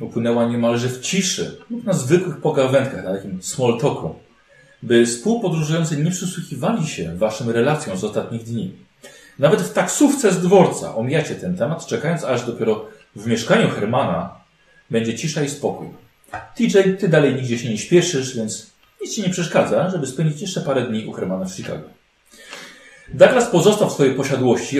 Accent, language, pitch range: native, Polish, 125-185 Hz